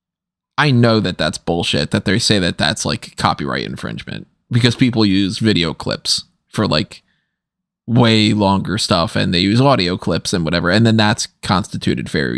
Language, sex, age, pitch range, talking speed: English, male, 20-39, 100-140 Hz, 170 wpm